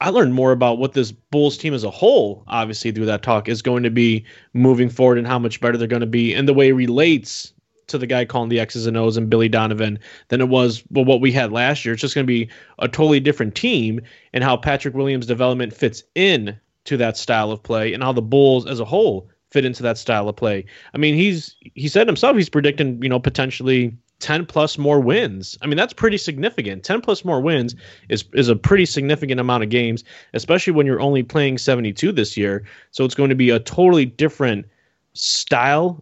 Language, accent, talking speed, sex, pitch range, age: English, American, 230 wpm, male, 115-150 Hz, 20-39